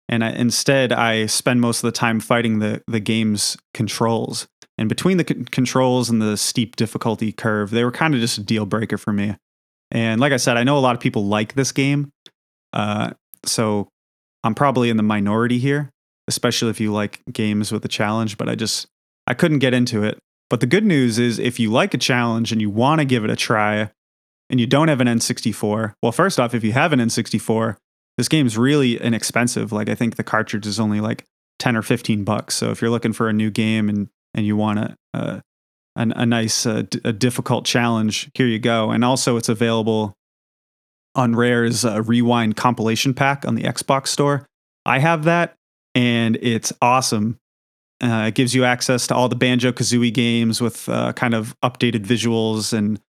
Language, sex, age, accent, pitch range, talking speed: English, male, 20-39, American, 110-125 Hz, 200 wpm